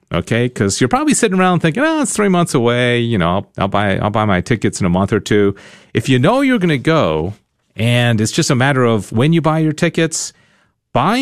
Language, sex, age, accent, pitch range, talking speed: English, male, 50-69, American, 110-165 Hz, 235 wpm